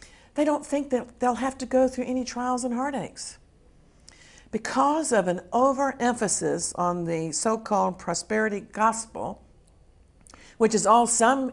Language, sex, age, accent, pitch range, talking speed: English, female, 50-69, American, 175-235 Hz, 135 wpm